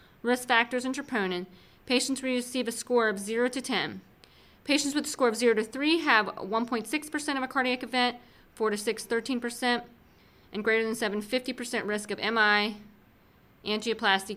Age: 30-49